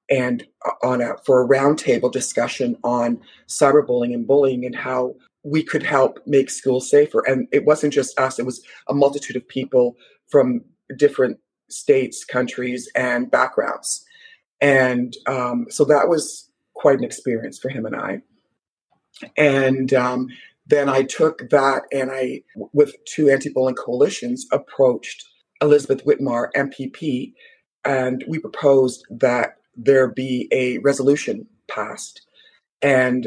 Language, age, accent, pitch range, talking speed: English, 40-59, American, 130-145 Hz, 130 wpm